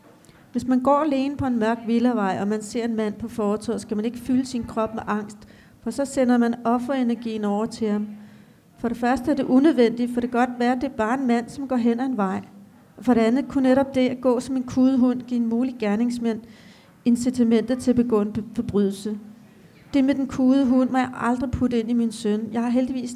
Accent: native